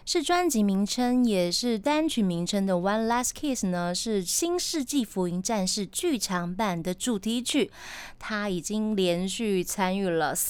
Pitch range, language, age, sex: 185-260 Hz, Chinese, 20-39, female